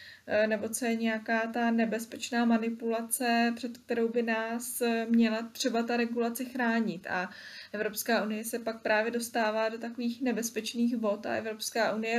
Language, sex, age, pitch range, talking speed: Czech, female, 20-39, 210-235 Hz, 150 wpm